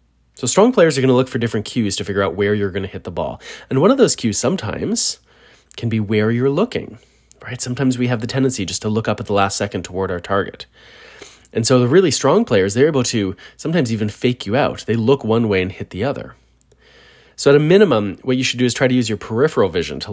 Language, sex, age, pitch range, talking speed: English, male, 30-49, 100-130 Hz, 255 wpm